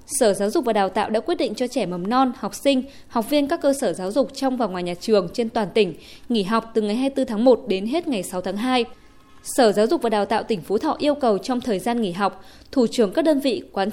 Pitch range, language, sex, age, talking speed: 215-270 Hz, Vietnamese, female, 20-39, 280 wpm